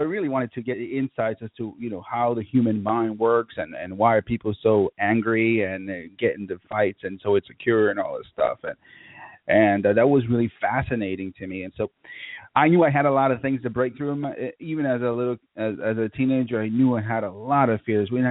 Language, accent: English, American